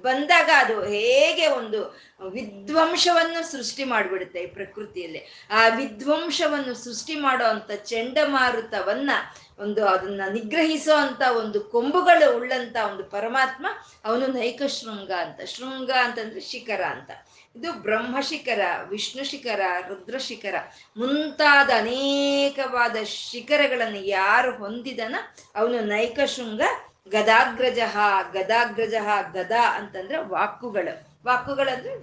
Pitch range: 210-280 Hz